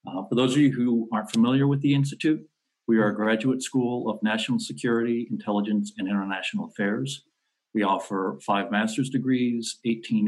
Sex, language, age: male, English, 50-69